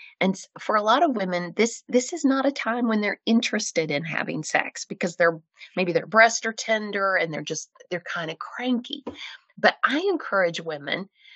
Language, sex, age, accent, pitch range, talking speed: English, female, 30-49, American, 185-250 Hz, 190 wpm